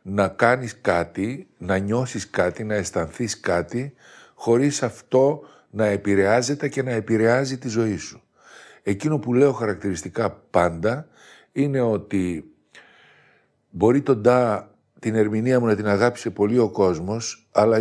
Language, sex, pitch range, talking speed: Greek, male, 105-130 Hz, 130 wpm